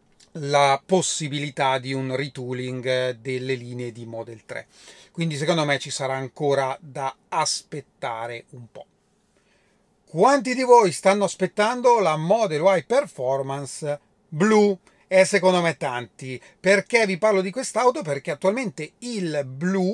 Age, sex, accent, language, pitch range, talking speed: 30-49, male, native, Italian, 140-200 Hz, 130 wpm